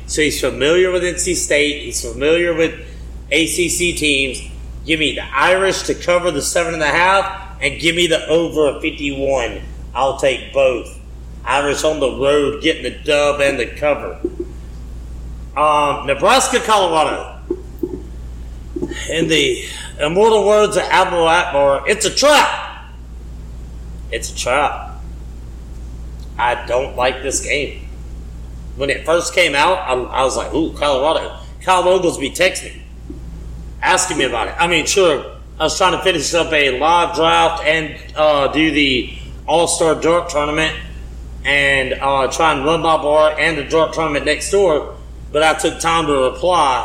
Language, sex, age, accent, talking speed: English, male, 40-59, American, 150 wpm